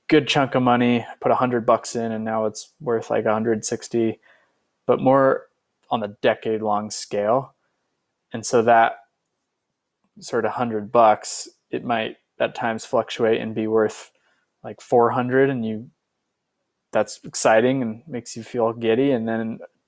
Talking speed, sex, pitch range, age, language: 150 wpm, male, 110-125 Hz, 20-39, English